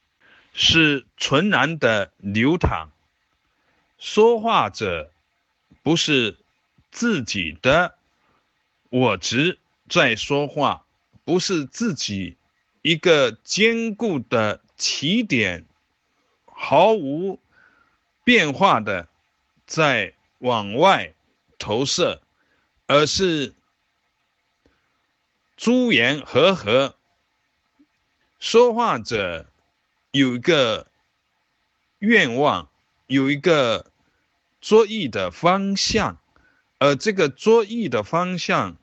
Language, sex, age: Chinese, male, 50-69